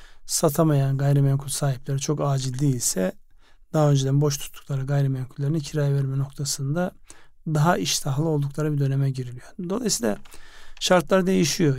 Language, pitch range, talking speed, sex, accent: Turkish, 140-160 Hz, 115 wpm, male, native